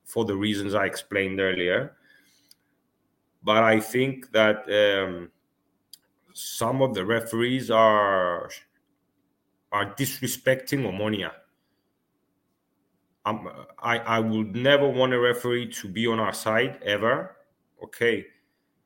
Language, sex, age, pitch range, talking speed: English, male, 30-49, 110-130 Hz, 110 wpm